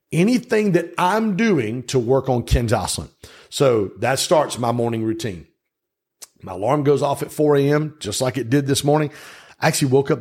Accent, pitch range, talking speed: American, 110-145 Hz, 195 wpm